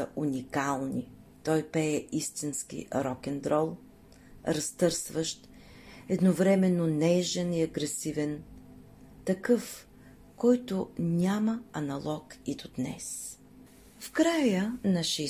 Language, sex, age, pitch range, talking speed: Bulgarian, female, 40-59, 155-225 Hz, 80 wpm